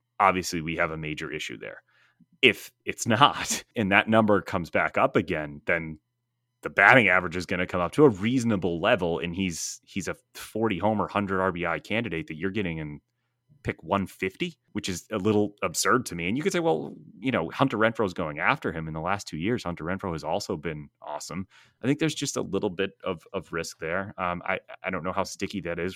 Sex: male